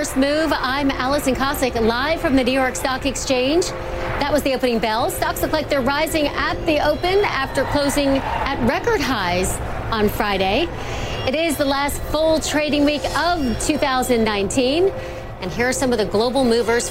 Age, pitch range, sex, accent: 40-59, 240-295 Hz, female, American